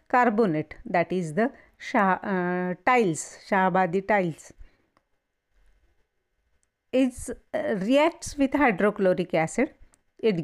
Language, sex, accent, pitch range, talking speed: Marathi, female, native, 180-270 Hz, 90 wpm